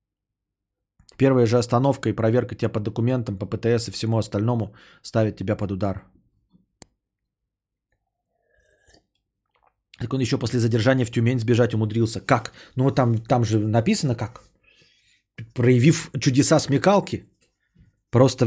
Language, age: Bulgarian, 20-39